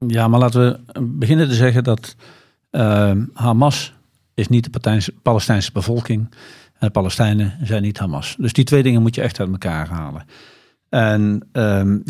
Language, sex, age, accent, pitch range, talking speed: Dutch, male, 50-69, Dutch, 105-130 Hz, 160 wpm